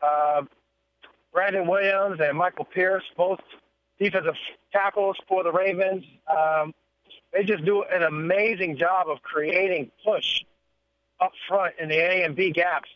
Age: 50-69